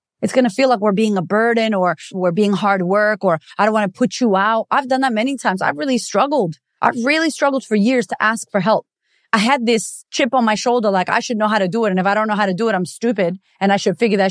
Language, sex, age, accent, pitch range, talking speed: English, female, 30-49, American, 185-225 Hz, 295 wpm